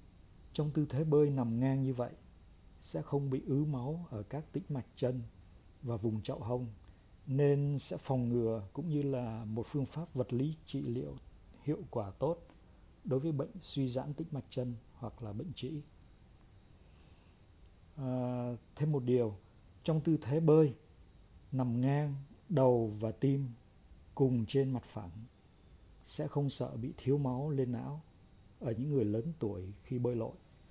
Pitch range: 100-135 Hz